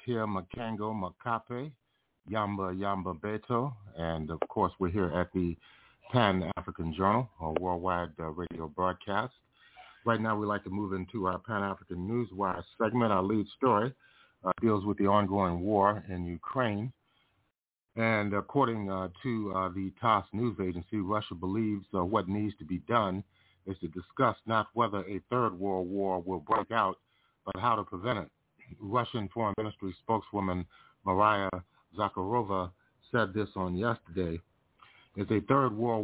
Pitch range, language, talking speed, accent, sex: 90-115 Hz, English, 150 wpm, American, male